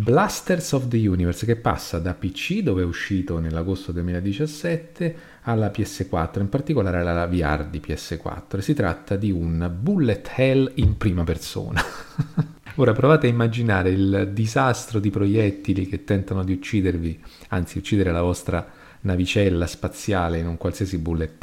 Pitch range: 85-115 Hz